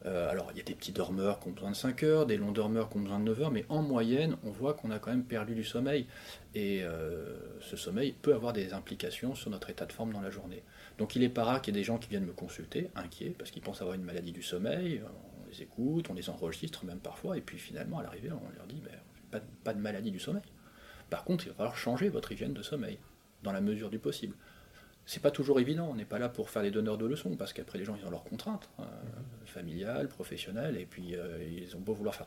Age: 30-49